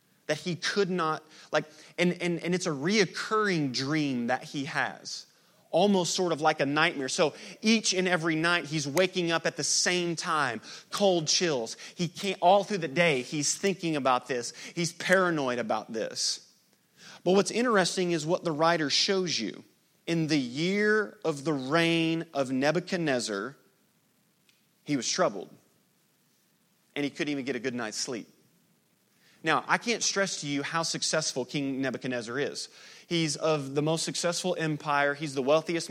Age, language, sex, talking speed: 30-49, English, male, 165 wpm